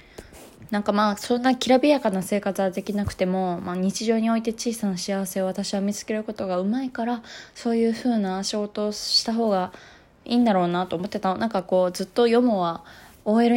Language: Japanese